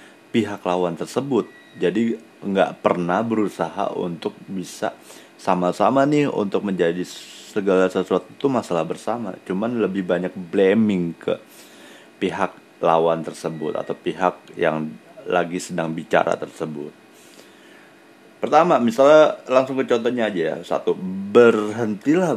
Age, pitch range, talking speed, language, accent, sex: 30-49, 85-115 Hz, 115 wpm, Indonesian, native, male